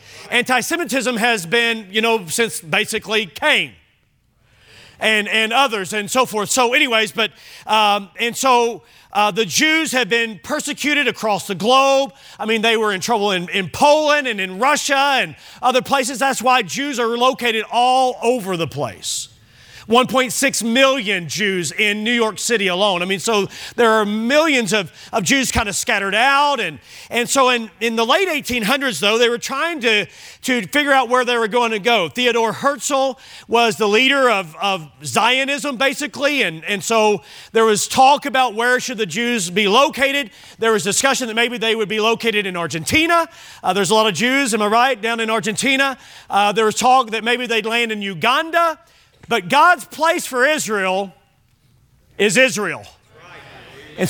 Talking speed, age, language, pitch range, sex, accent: 175 wpm, 40-59, English, 210-260 Hz, male, American